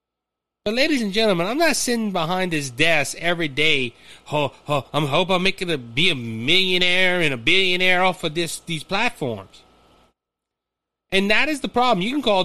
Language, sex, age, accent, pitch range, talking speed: English, male, 30-49, American, 145-220 Hz, 190 wpm